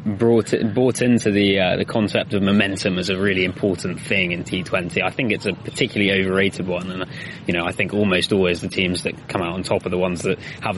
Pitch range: 95-120 Hz